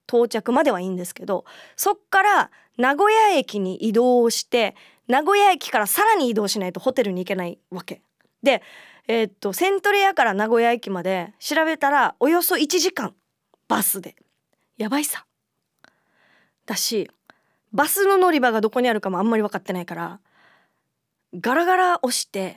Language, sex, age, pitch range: Japanese, female, 20-39, 200-310 Hz